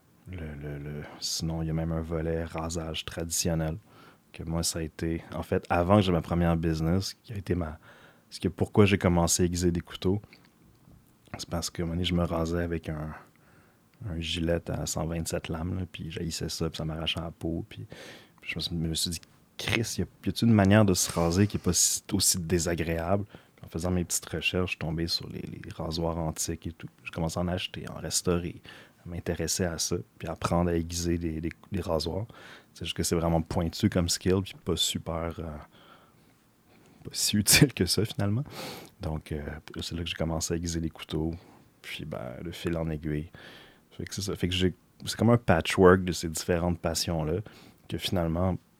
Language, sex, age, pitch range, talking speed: French, male, 30-49, 80-95 Hz, 210 wpm